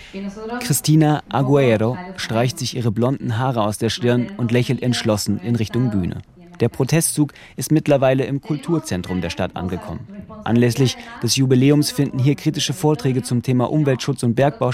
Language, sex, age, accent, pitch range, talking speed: German, male, 30-49, German, 110-140 Hz, 150 wpm